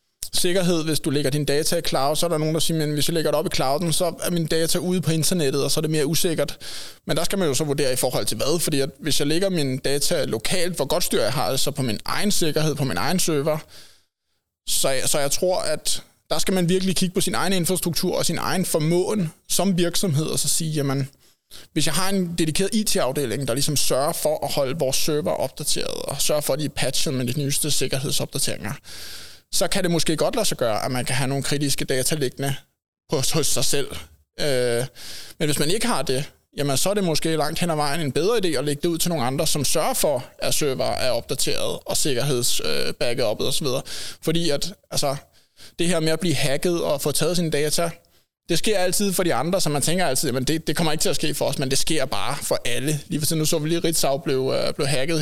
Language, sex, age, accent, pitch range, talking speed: Danish, male, 20-39, native, 140-175 Hz, 245 wpm